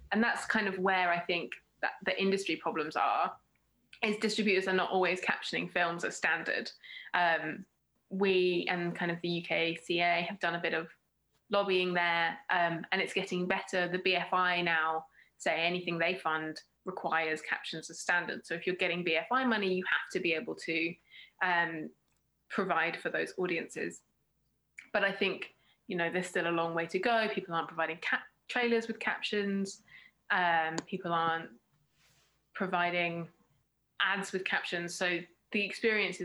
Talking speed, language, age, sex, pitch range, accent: 160 wpm, English, 20-39, female, 165-190 Hz, British